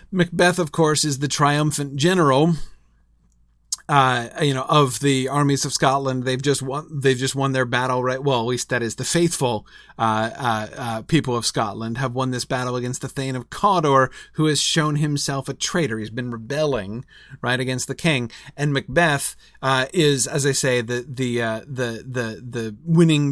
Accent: American